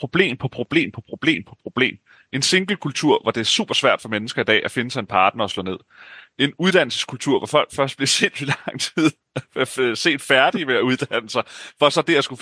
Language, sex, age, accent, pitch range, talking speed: Danish, male, 30-49, native, 100-145 Hz, 225 wpm